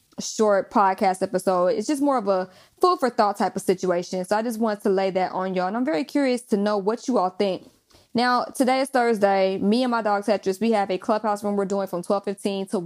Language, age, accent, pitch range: English, 20-39, American, 190-220 Hz